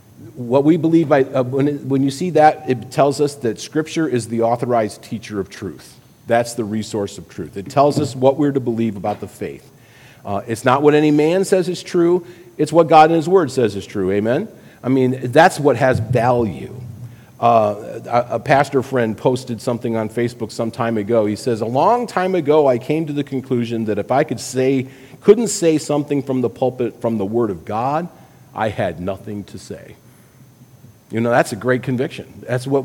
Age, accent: 40-59, American